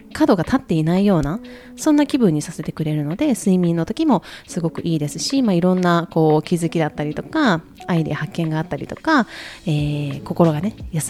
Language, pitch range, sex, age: Japanese, 155-215 Hz, female, 20-39